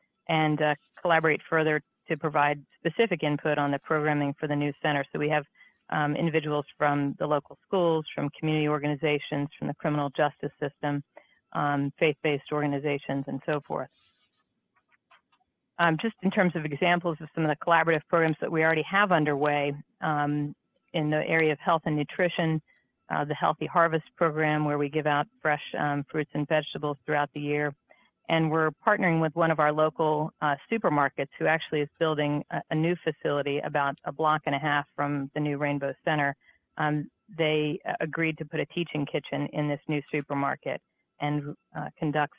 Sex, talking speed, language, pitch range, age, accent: female, 175 wpm, English, 145-160 Hz, 40-59, American